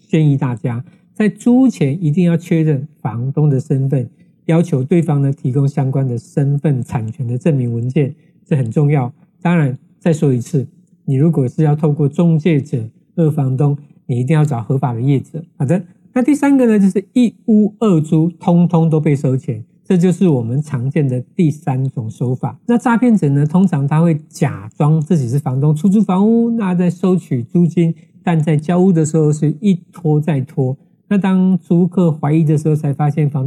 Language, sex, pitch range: Chinese, male, 140-185 Hz